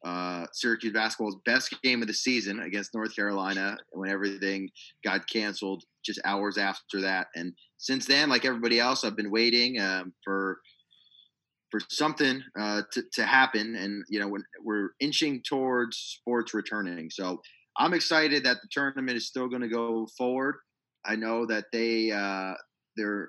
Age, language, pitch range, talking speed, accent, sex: 30-49, English, 100-115 Hz, 160 wpm, American, male